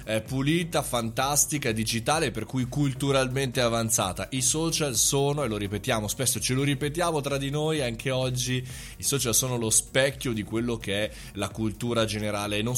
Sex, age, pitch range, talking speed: male, 20-39, 110-150 Hz, 165 wpm